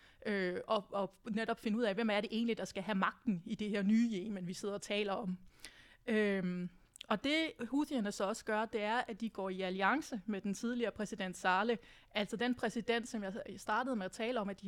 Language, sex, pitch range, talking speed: Danish, female, 200-235 Hz, 225 wpm